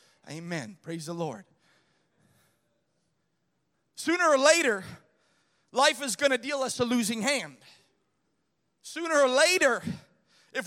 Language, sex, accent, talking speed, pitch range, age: English, male, American, 110 wpm, 245-335 Hz, 30-49